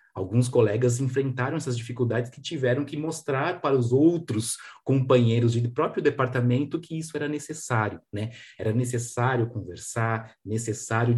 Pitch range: 115-150 Hz